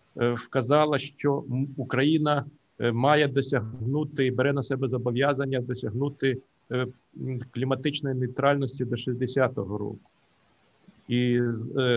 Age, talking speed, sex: 50-69, 85 wpm, male